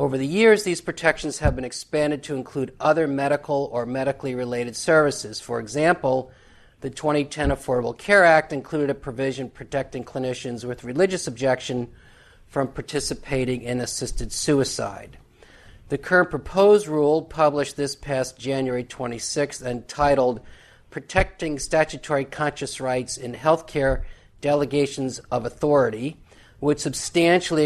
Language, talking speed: English, 125 wpm